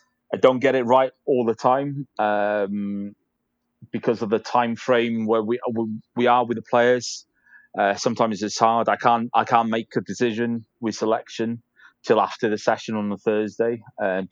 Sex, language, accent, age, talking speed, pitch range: male, English, British, 20-39, 175 wpm, 105-120 Hz